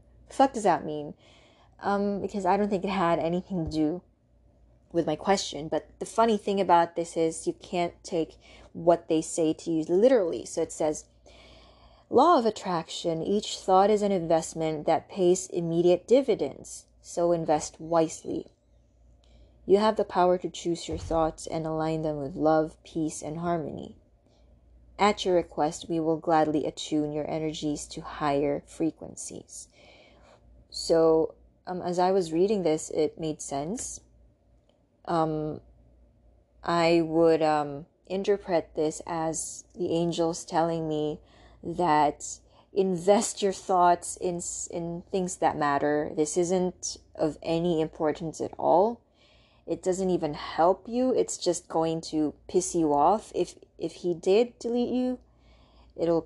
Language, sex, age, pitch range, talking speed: English, female, 20-39, 155-185 Hz, 145 wpm